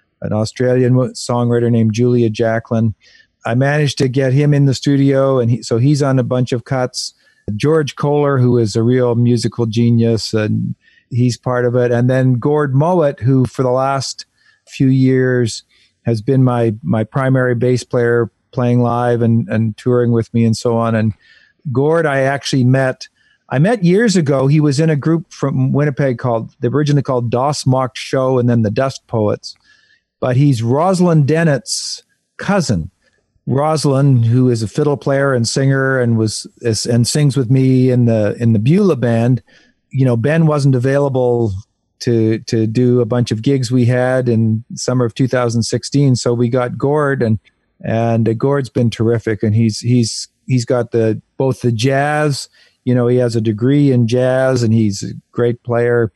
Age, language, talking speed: 50-69, English, 175 wpm